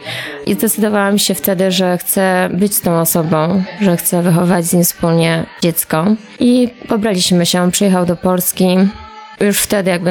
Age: 20-39